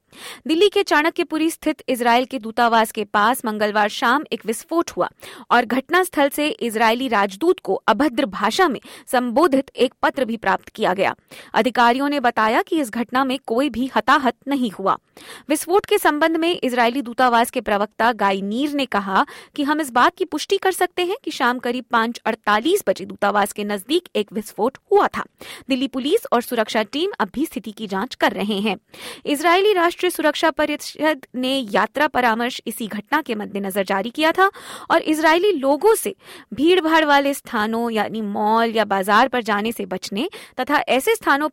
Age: 20-39